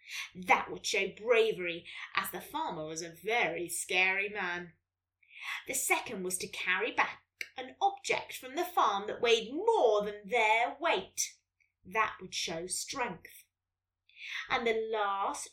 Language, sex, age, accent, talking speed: English, female, 20-39, British, 140 wpm